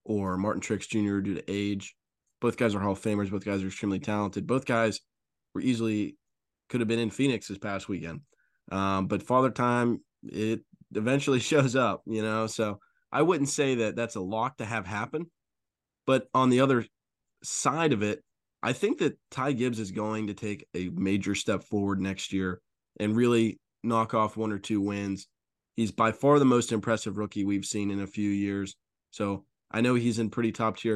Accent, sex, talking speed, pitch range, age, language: American, male, 200 wpm, 100-115 Hz, 20-39, English